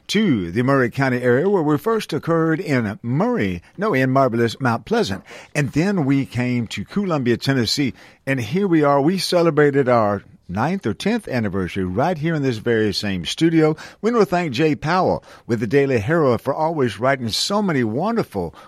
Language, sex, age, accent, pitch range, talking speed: English, male, 50-69, American, 115-155 Hz, 185 wpm